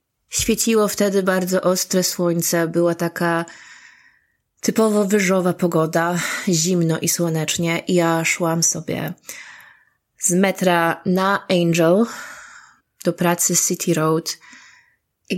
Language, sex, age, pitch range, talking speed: Polish, female, 20-39, 170-200 Hz, 100 wpm